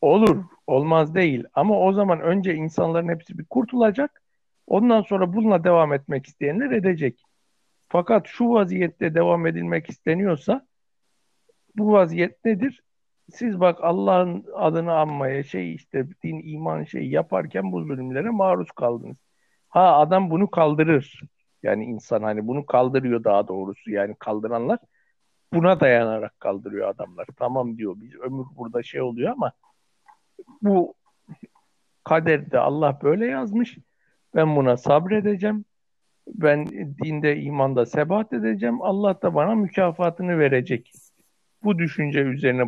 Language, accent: Turkish, native